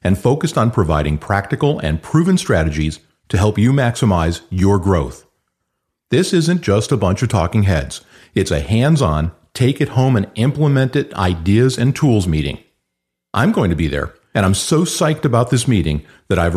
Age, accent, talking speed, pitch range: 50-69, American, 160 wpm, 85-125 Hz